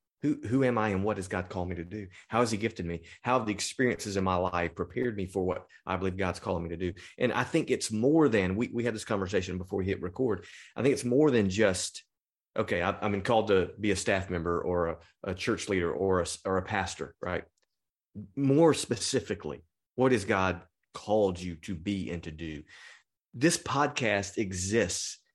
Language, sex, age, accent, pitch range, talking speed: English, male, 30-49, American, 95-120 Hz, 220 wpm